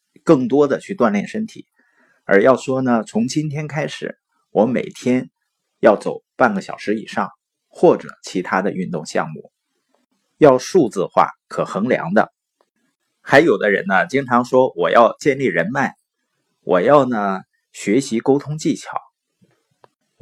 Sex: male